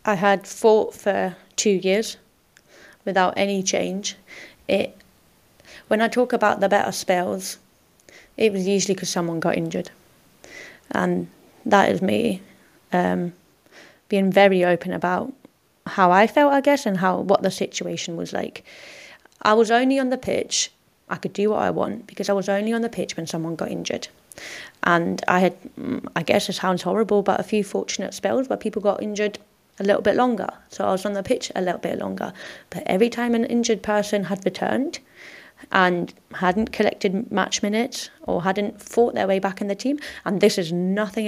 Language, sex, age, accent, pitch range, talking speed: English, female, 20-39, British, 185-220 Hz, 180 wpm